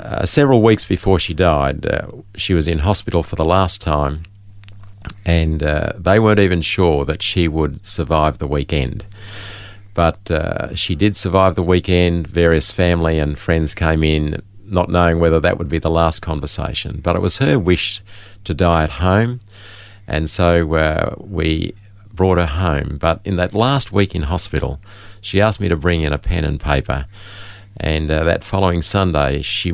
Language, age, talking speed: English, 50-69, 180 wpm